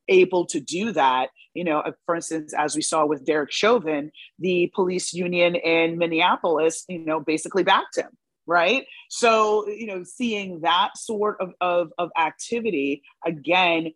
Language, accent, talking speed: English, American, 155 wpm